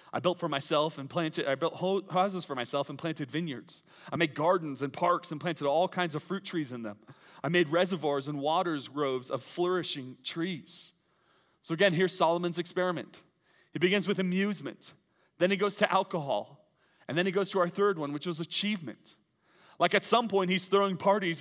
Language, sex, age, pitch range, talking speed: English, male, 30-49, 170-225 Hz, 195 wpm